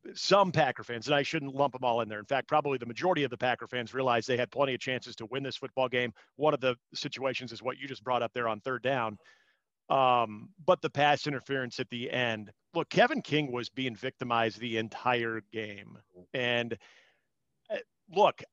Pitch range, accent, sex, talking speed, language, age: 125-150 Hz, American, male, 205 wpm, English, 40-59